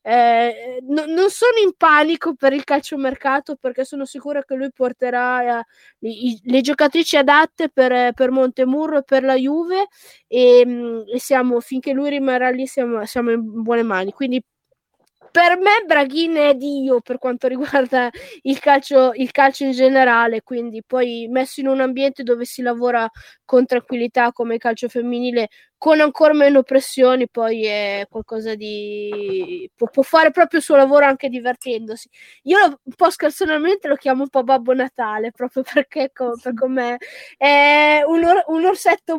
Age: 20-39